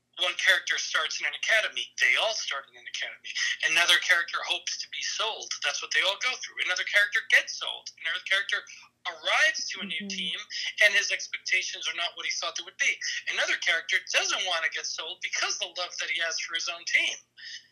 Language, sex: English, male